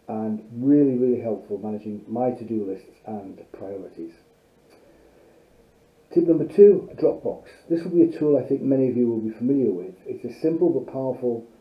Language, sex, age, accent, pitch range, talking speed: English, male, 40-59, British, 115-140 Hz, 170 wpm